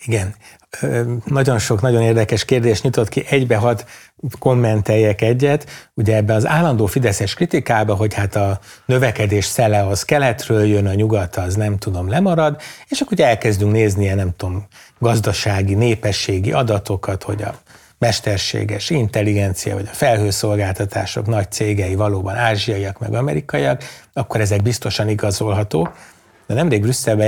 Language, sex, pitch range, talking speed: Hungarian, male, 100-120 Hz, 140 wpm